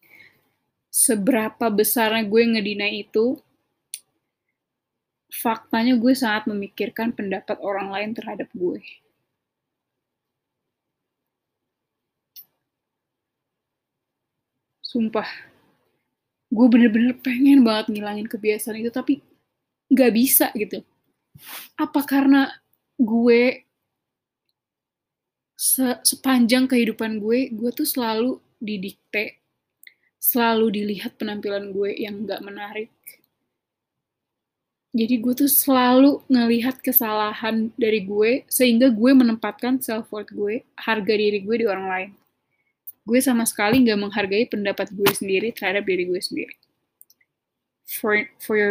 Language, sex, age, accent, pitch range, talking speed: Indonesian, female, 20-39, native, 210-250 Hz, 95 wpm